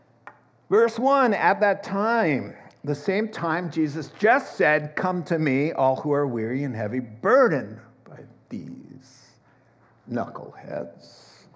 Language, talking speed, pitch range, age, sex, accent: English, 125 wpm, 140-190 Hz, 60-79, male, American